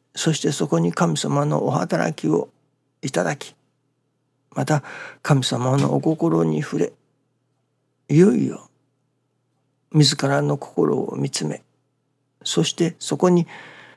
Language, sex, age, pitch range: Japanese, male, 60-79, 125-145 Hz